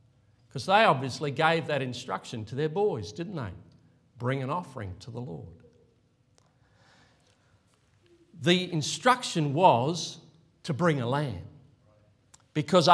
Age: 50-69